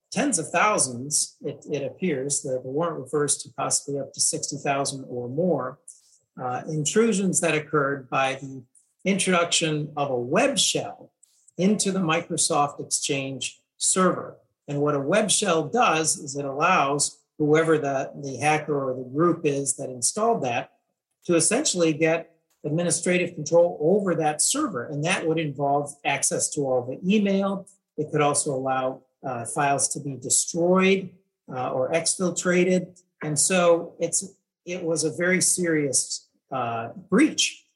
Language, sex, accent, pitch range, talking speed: English, male, American, 140-175 Hz, 145 wpm